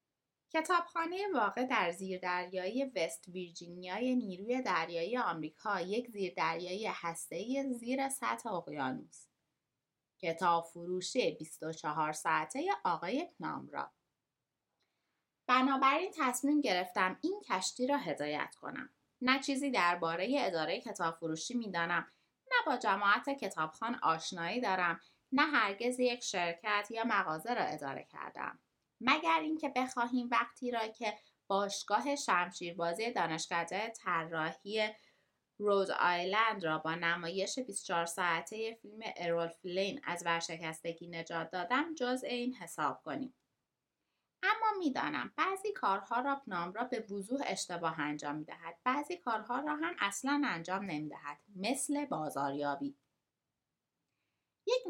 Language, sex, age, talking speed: Persian, female, 20-39, 110 wpm